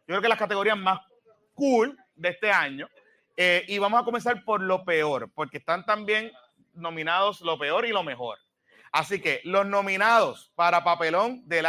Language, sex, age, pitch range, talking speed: Spanish, male, 30-49, 180-230 Hz, 175 wpm